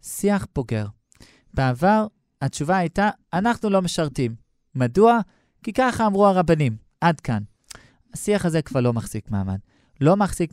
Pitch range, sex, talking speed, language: 130-185 Hz, male, 130 wpm, Hebrew